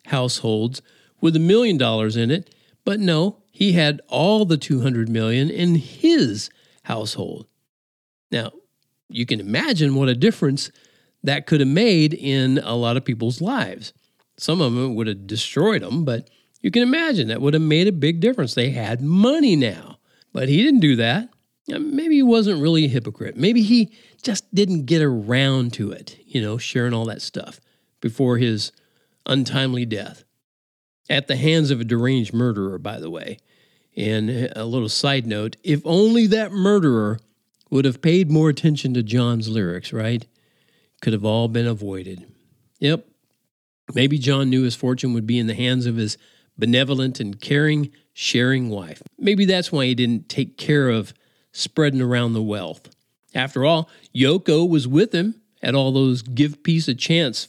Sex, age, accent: male, 50-69, American